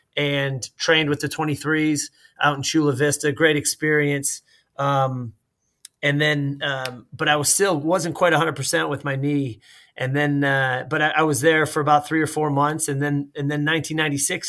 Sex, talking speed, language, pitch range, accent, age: male, 180 wpm, English, 140-155 Hz, American, 30-49